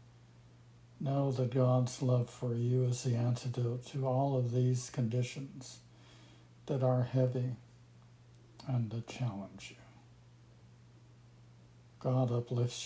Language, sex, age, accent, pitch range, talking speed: English, male, 60-79, American, 110-120 Hz, 105 wpm